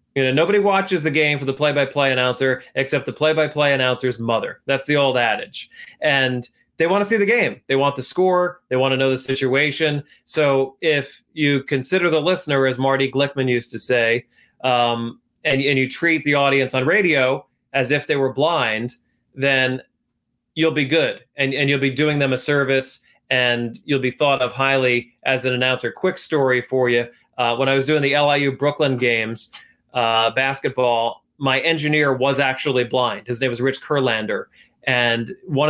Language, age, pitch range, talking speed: English, 30-49, 125-150 Hz, 185 wpm